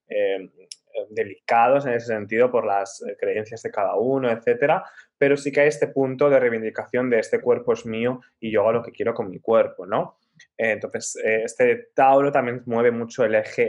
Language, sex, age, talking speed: Spanish, male, 20-39, 195 wpm